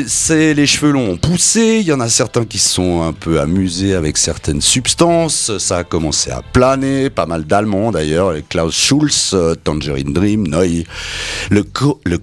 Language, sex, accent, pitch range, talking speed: French, male, French, 85-140 Hz, 165 wpm